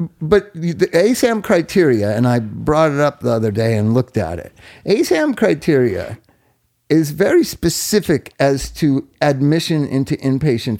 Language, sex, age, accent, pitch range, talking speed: English, male, 50-69, American, 115-160 Hz, 145 wpm